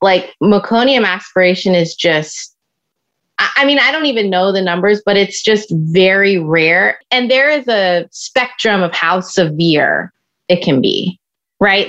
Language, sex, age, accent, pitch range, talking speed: English, female, 20-39, American, 180-230 Hz, 150 wpm